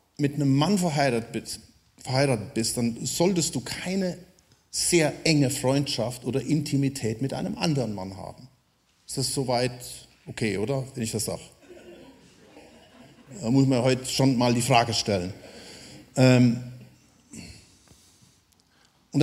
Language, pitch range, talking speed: German, 120-165 Hz, 125 wpm